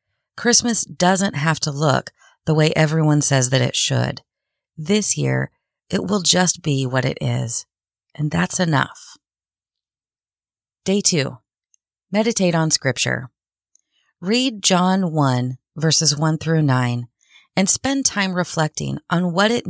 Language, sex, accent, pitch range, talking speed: English, female, American, 130-180 Hz, 130 wpm